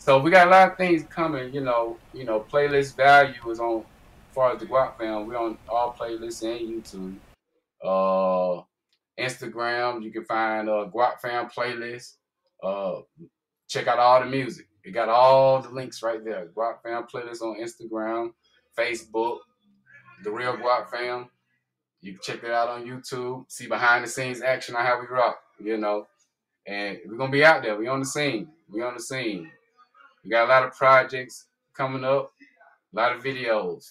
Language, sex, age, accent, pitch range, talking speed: English, male, 20-39, American, 115-135 Hz, 185 wpm